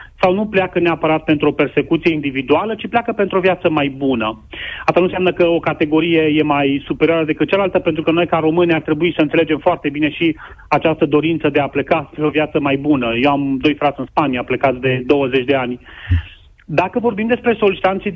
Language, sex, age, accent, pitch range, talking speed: Romanian, male, 30-49, native, 150-180 Hz, 210 wpm